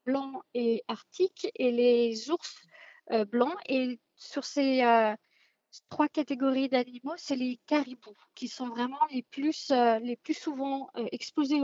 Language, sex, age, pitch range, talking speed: French, female, 40-59, 245-290 Hz, 150 wpm